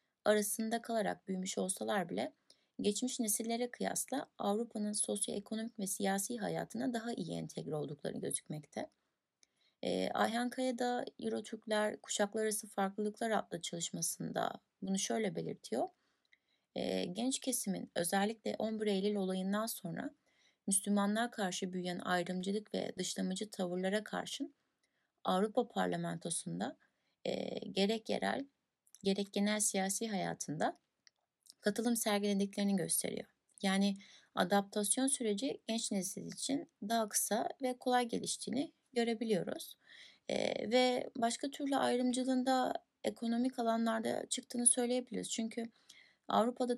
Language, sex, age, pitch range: Turkish, female, 30-49, 200-245 Hz